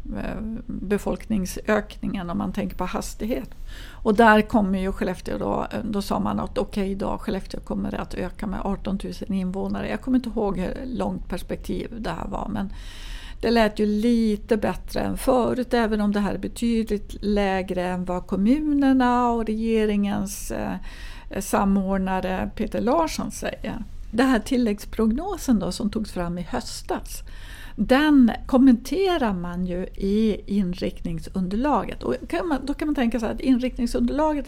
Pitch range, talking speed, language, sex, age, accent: 195-245 Hz, 155 wpm, Swedish, female, 60-79, native